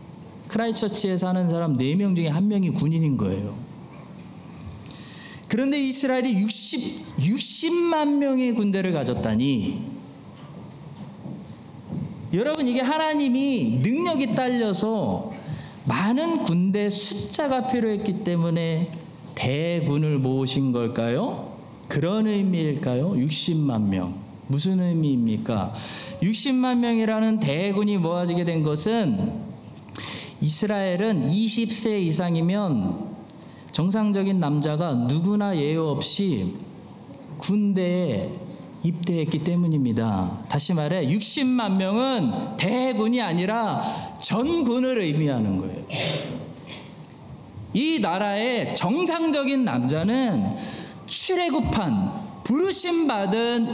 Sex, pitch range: male, 160-230 Hz